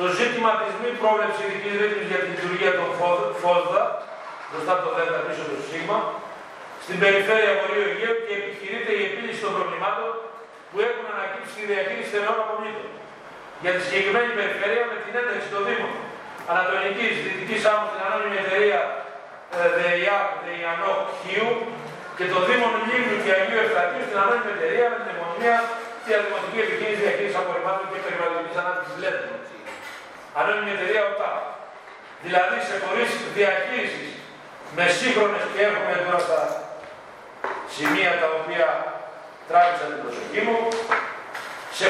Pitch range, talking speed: 190-235 Hz, 105 wpm